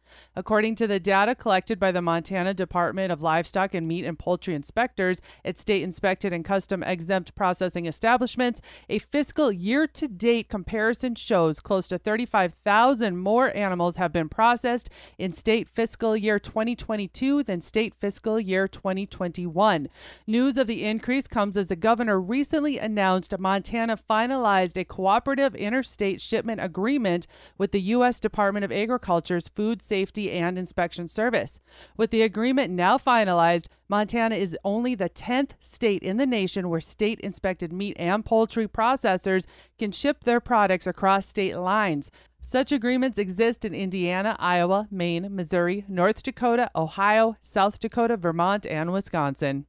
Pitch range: 185-230 Hz